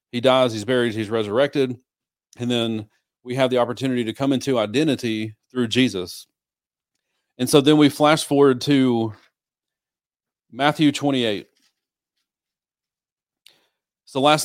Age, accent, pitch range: 40-59, American, 110-140 Hz